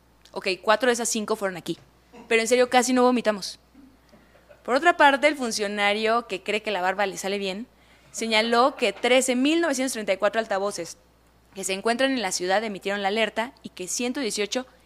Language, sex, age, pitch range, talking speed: Spanish, female, 20-39, 190-250 Hz, 170 wpm